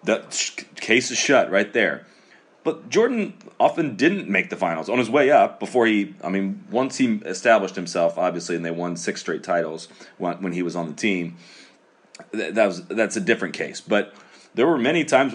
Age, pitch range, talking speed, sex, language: 30-49, 90-115 Hz, 190 wpm, male, English